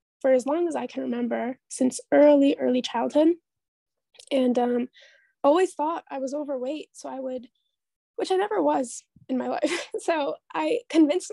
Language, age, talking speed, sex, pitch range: English, 10-29, 165 wpm, female, 245-295 Hz